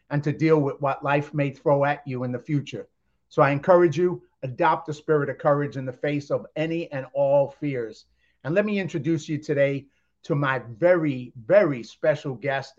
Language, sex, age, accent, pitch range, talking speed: English, male, 50-69, American, 140-160 Hz, 195 wpm